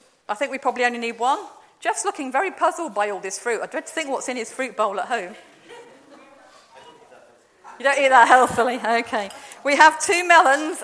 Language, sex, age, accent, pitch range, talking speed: English, female, 40-59, British, 225-305 Hz, 200 wpm